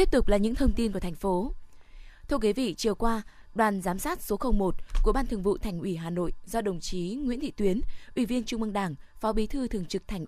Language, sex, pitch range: Vietnamese, female, 185-235 Hz